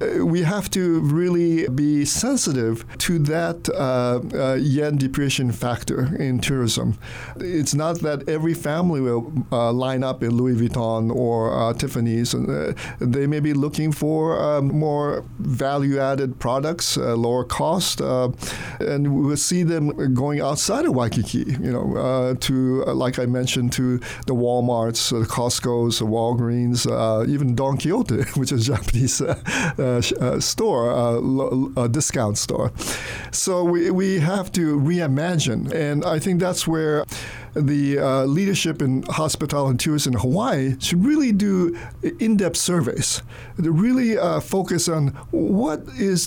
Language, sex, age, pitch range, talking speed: English, male, 50-69, 125-160 Hz, 145 wpm